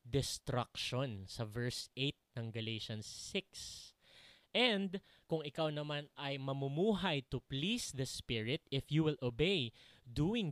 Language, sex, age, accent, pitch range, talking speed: English, male, 20-39, Filipino, 115-155 Hz, 125 wpm